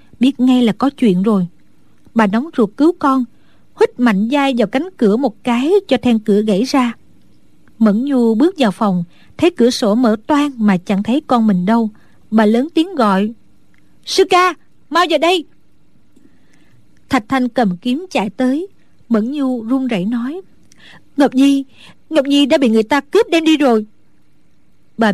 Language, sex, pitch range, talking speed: Vietnamese, female, 215-275 Hz, 175 wpm